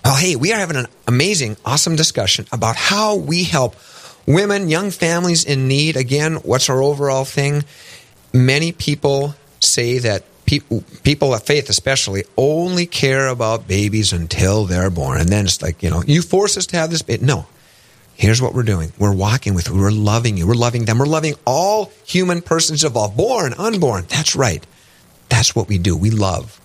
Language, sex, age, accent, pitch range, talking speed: English, male, 40-59, American, 110-145 Hz, 185 wpm